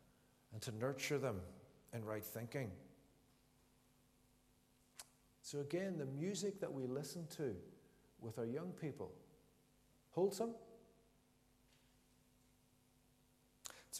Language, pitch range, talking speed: English, 115-155 Hz, 90 wpm